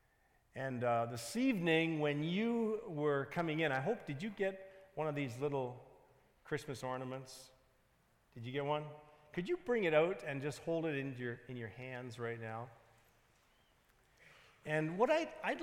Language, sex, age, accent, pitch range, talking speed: English, male, 40-59, American, 120-160 Hz, 165 wpm